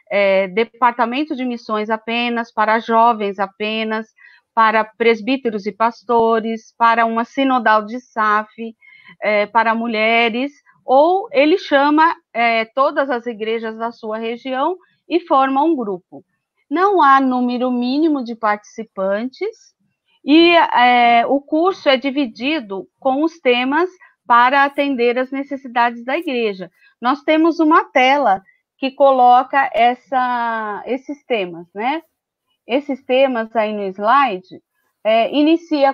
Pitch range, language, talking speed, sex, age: 220-290 Hz, Portuguese, 110 wpm, female, 40-59